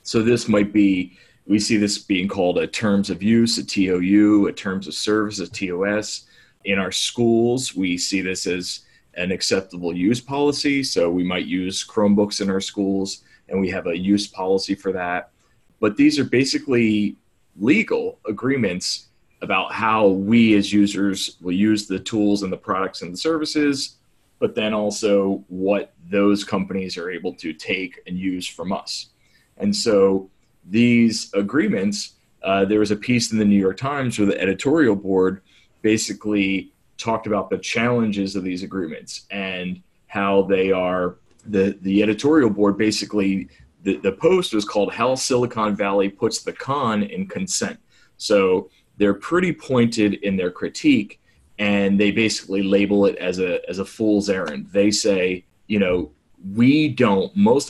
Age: 30-49